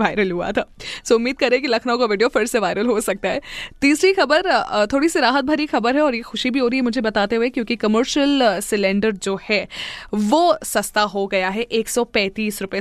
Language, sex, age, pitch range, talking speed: Hindi, female, 20-39, 205-255 Hz, 215 wpm